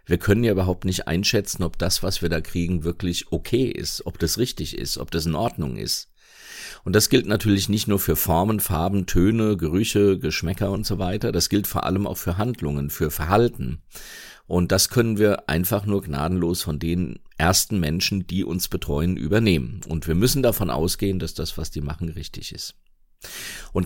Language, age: German, 50-69